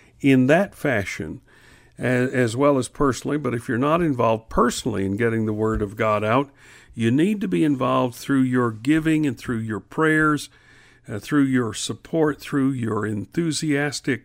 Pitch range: 110-135 Hz